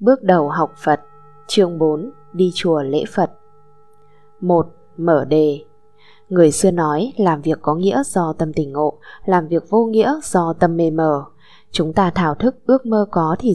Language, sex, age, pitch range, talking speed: Vietnamese, female, 20-39, 150-195 Hz, 175 wpm